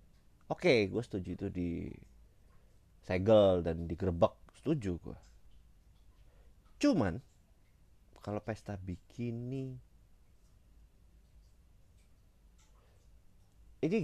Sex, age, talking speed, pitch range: male, 30-49, 65 wpm, 85-105 Hz